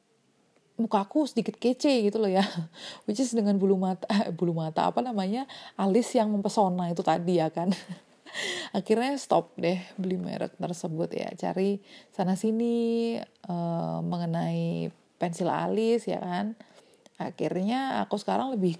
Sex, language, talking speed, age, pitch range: female, Indonesian, 135 wpm, 30-49, 170-220 Hz